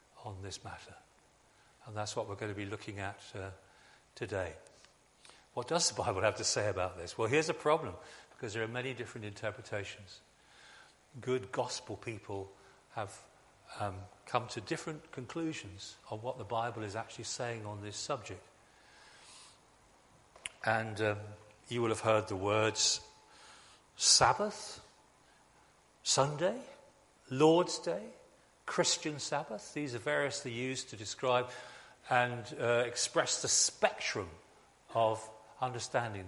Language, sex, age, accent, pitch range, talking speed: English, male, 40-59, British, 105-130 Hz, 130 wpm